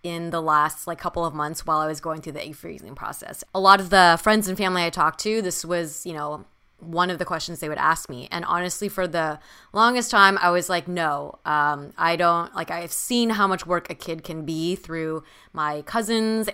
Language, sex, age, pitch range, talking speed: English, female, 20-39, 160-195 Hz, 235 wpm